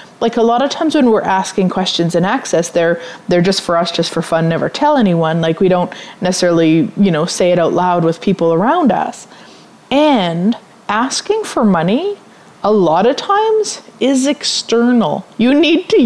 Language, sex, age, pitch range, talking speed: English, female, 30-49, 175-245 Hz, 185 wpm